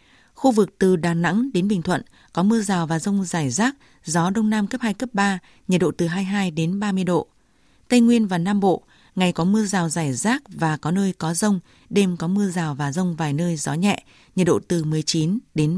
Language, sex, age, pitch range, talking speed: Vietnamese, female, 20-39, 170-210 Hz, 230 wpm